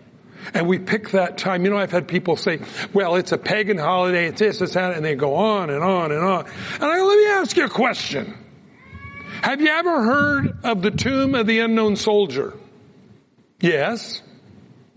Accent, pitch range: American, 175-230 Hz